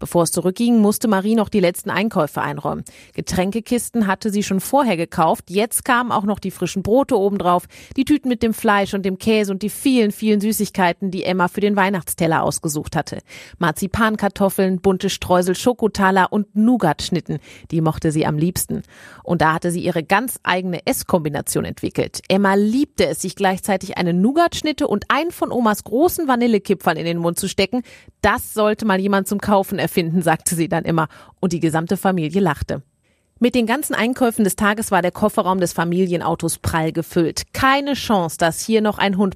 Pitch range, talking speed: 165-215 Hz, 180 wpm